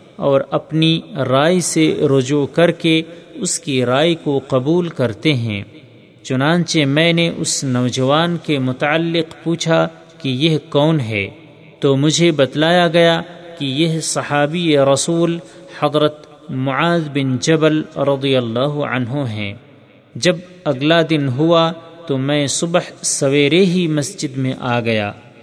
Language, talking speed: Urdu, 130 wpm